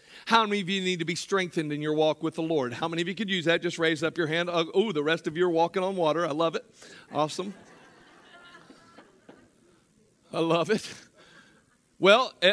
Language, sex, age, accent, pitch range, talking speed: English, male, 40-59, American, 160-205 Hz, 205 wpm